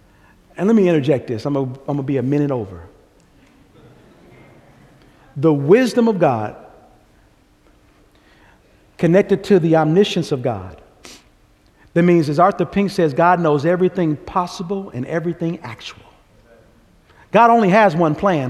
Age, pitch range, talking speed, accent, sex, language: 50-69, 145-190 Hz, 130 wpm, American, male, English